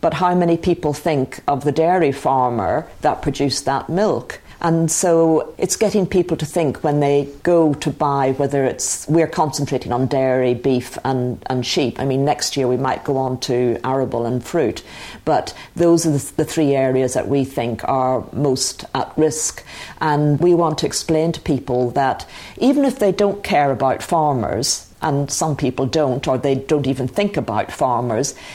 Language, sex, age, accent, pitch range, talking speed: English, female, 50-69, British, 130-160 Hz, 180 wpm